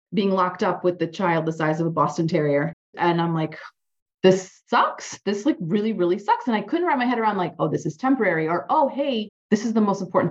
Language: English